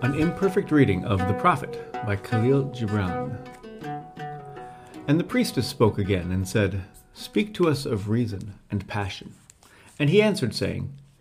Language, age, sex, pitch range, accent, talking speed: English, 40-59, male, 105-135 Hz, American, 145 wpm